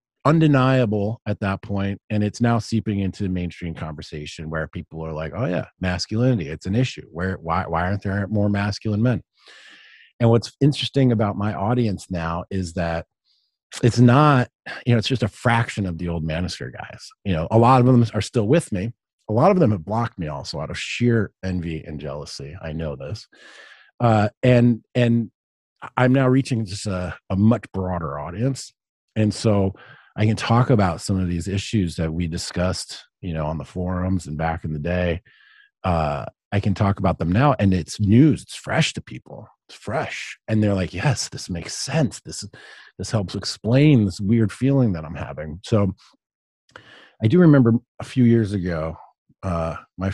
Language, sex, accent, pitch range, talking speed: English, male, American, 85-120 Hz, 190 wpm